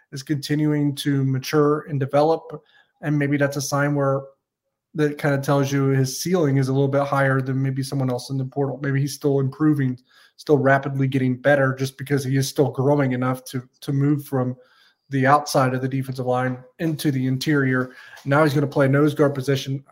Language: English